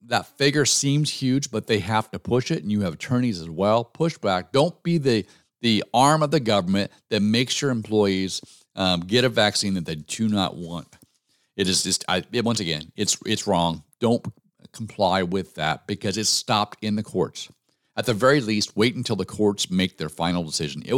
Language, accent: English, American